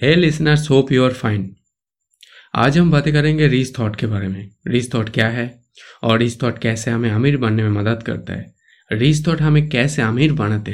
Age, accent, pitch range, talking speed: 20-39, native, 110-140 Hz, 200 wpm